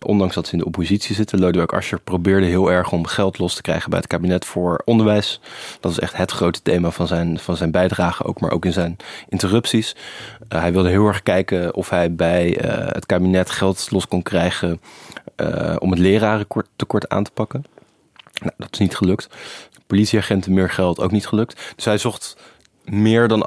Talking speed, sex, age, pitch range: 190 wpm, male, 20-39, 90-105 Hz